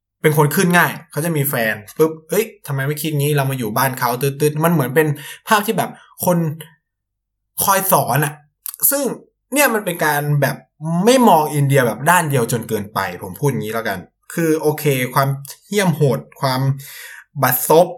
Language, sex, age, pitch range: Thai, male, 20-39, 140-175 Hz